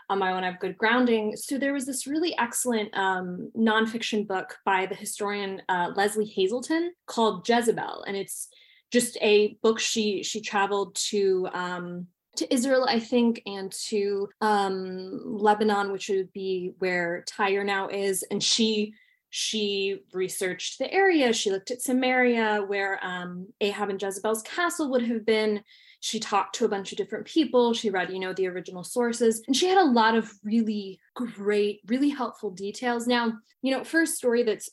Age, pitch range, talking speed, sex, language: 20-39, 190-235 Hz, 175 wpm, female, English